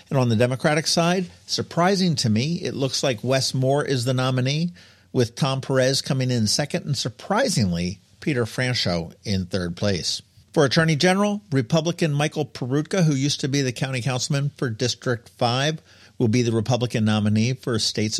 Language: English